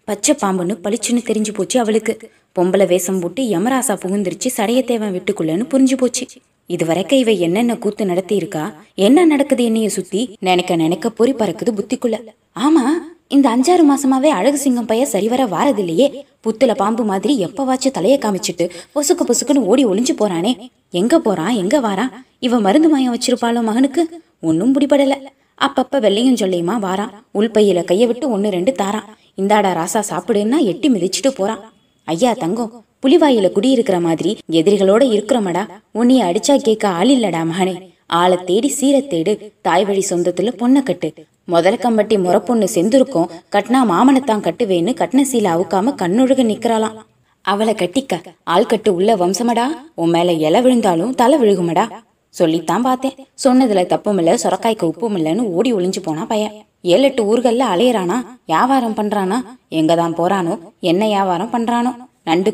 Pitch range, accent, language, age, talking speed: 185-255 Hz, native, Tamil, 20-39, 125 wpm